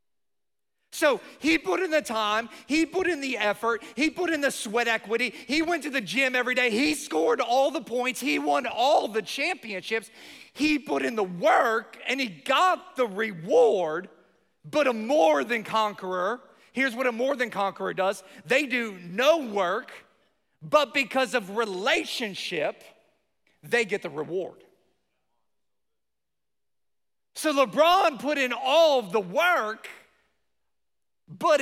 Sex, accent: male, American